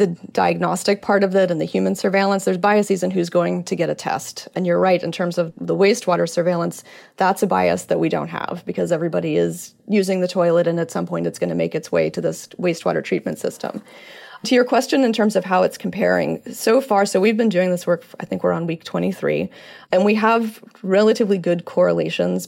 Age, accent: 30-49, American